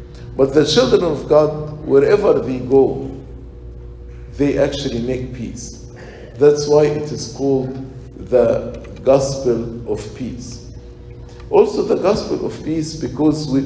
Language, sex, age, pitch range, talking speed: English, male, 50-69, 120-155 Hz, 125 wpm